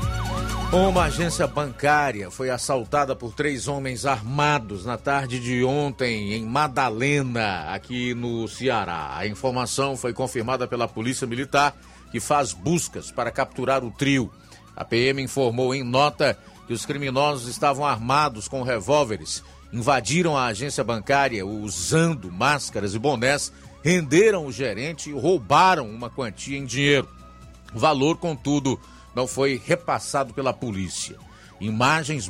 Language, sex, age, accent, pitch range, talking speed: Portuguese, male, 50-69, Brazilian, 110-145 Hz, 130 wpm